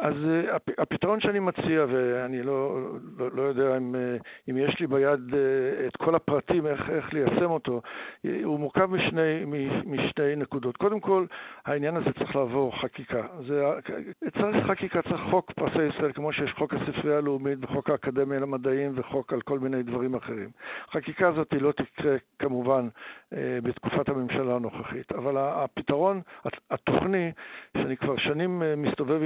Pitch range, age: 130-155 Hz, 60-79